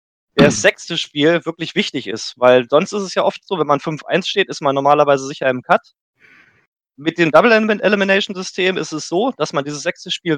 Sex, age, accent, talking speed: male, 20-39, German, 195 wpm